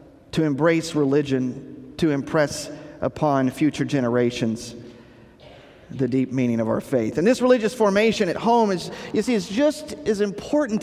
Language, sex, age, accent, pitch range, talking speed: English, male, 50-69, American, 150-225 Hz, 150 wpm